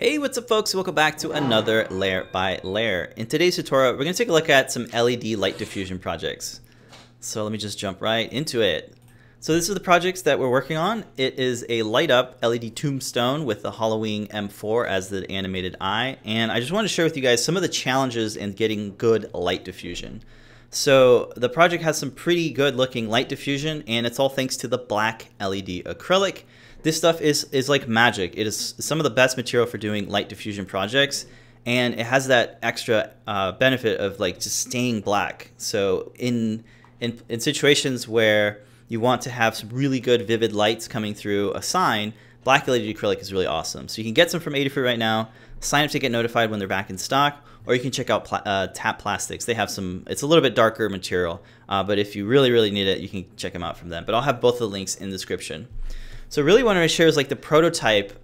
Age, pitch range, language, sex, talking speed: 30-49, 105-140 Hz, English, male, 230 wpm